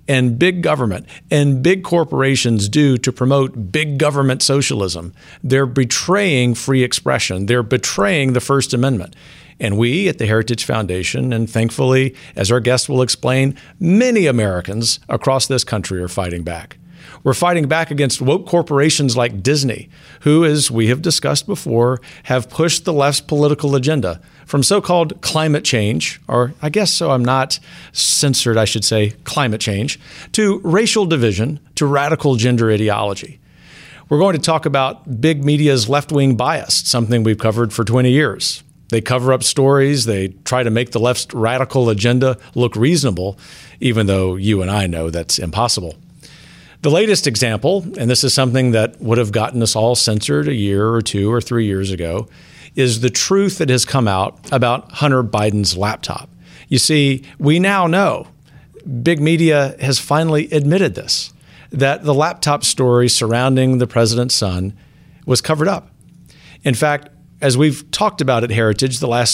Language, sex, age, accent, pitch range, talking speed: English, male, 50-69, American, 115-150 Hz, 160 wpm